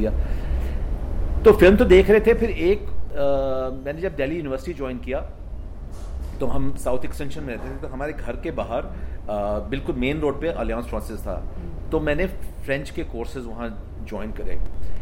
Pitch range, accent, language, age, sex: 105-155 Hz, native, Hindi, 40-59, male